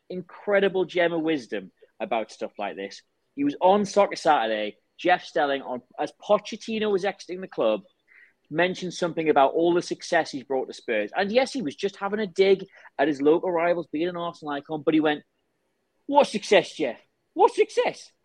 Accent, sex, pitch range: British, male, 135-190 Hz